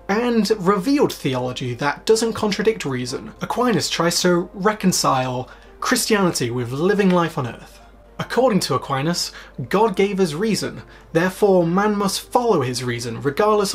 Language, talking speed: English, 135 wpm